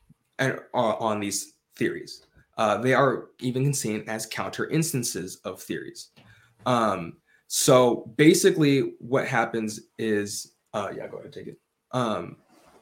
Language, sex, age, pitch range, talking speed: English, male, 20-39, 105-135 Hz, 135 wpm